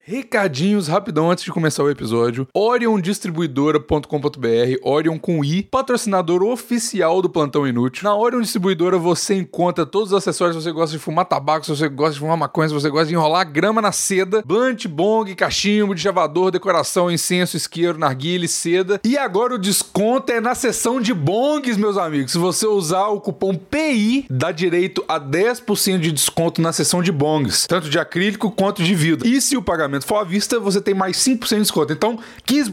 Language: Portuguese